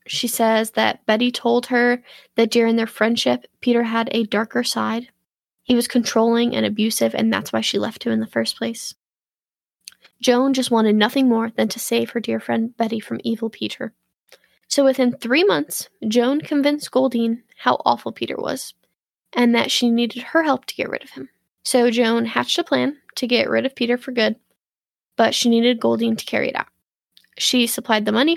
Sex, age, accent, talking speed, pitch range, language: female, 10-29, American, 195 wpm, 225-255 Hz, English